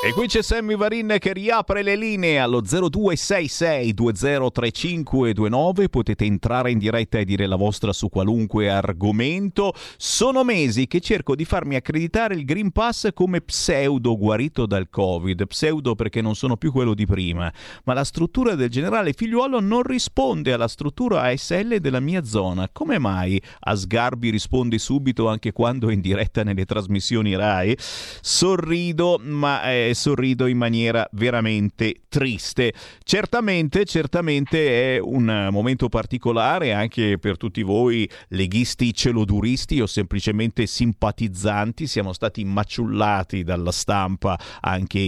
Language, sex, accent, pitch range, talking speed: Italian, male, native, 110-165 Hz, 140 wpm